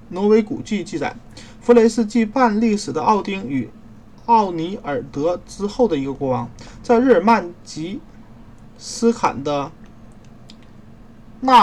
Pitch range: 140-220 Hz